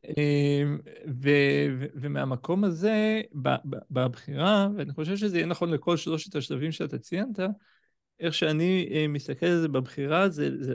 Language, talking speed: Hebrew, 125 wpm